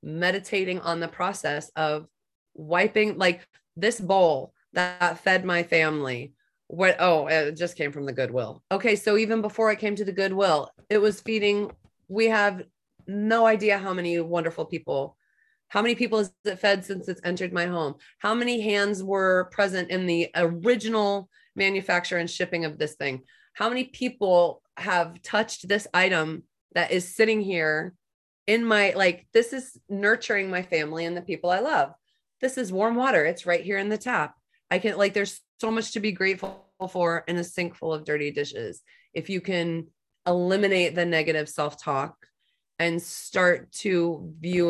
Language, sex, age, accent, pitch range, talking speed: English, female, 30-49, American, 170-205 Hz, 170 wpm